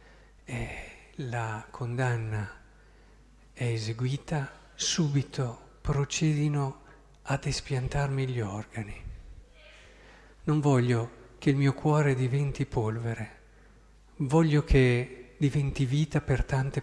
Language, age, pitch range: Italian, 50-69, 120-150 Hz